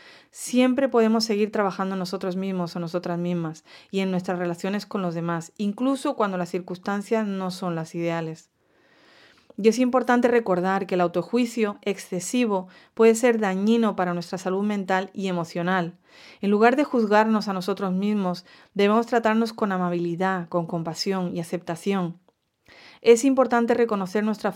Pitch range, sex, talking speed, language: 180-230 Hz, female, 150 wpm, English